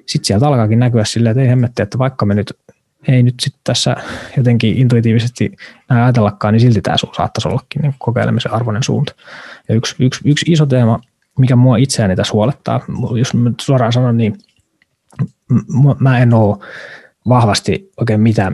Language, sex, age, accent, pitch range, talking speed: Finnish, male, 20-39, native, 110-130 Hz, 165 wpm